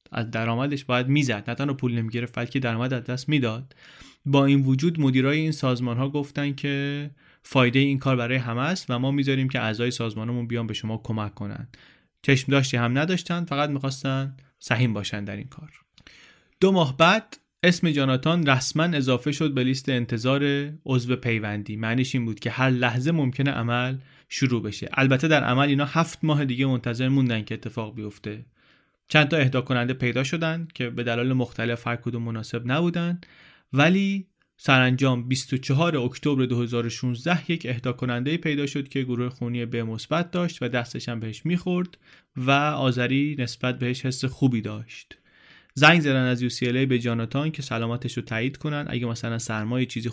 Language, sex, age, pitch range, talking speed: Persian, male, 30-49, 120-140 Hz, 170 wpm